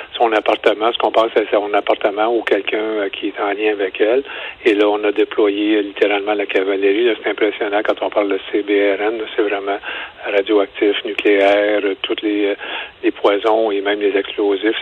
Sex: male